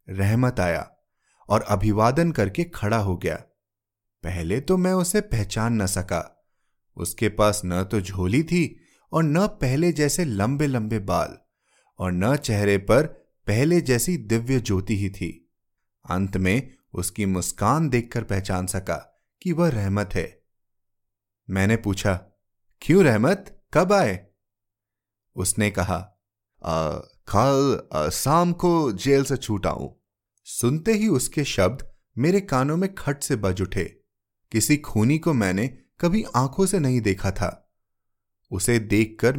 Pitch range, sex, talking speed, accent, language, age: 100-145 Hz, male, 135 wpm, native, Hindi, 30-49